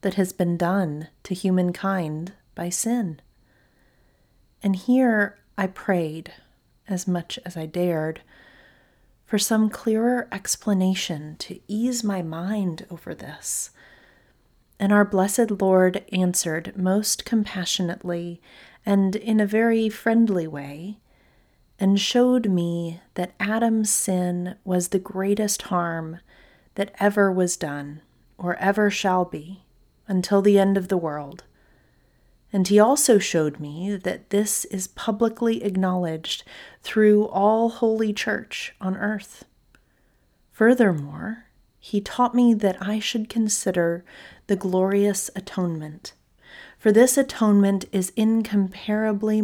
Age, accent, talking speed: 30-49, American, 115 wpm